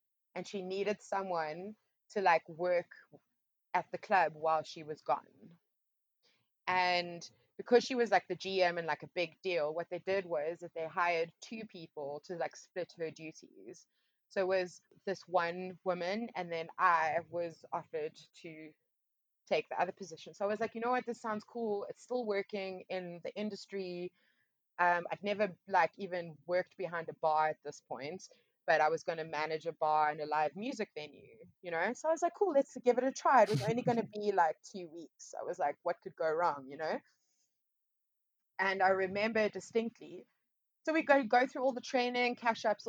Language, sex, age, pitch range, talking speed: English, female, 20-39, 170-225 Hz, 195 wpm